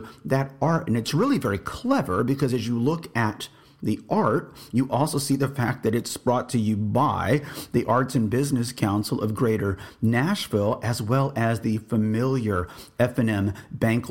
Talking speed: 170 wpm